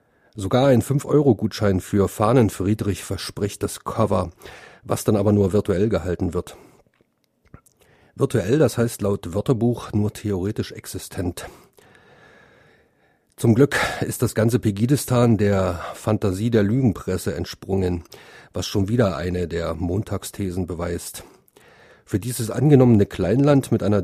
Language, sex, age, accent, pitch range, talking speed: German, male, 40-59, German, 95-120 Hz, 115 wpm